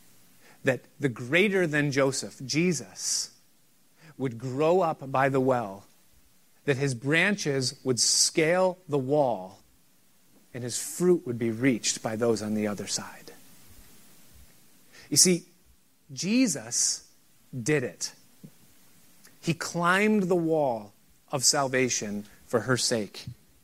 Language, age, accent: English, 30-49, American